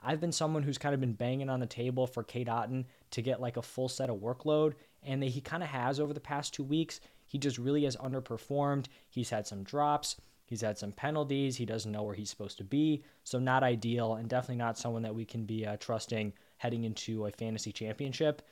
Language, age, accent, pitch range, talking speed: English, 20-39, American, 115-140 Hz, 235 wpm